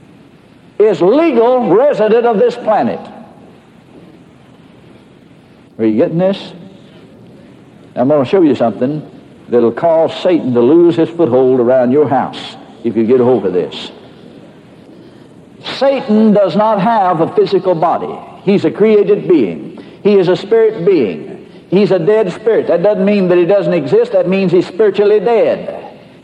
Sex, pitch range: male, 175-220 Hz